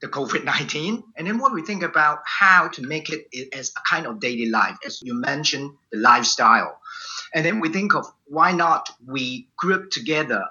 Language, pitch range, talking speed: English, 130-165 Hz, 190 wpm